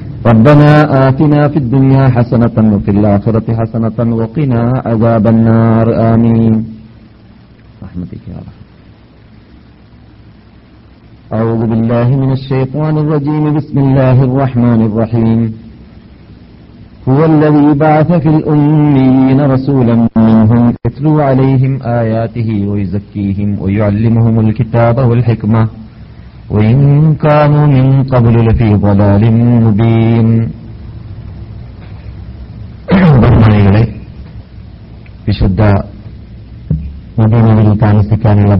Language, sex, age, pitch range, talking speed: Malayalam, male, 50-69, 105-125 Hz, 80 wpm